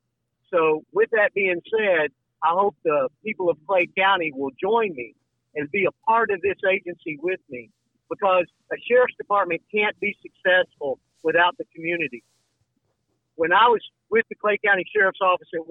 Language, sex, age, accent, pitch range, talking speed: English, male, 50-69, American, 155-215 Hz, 170 wpm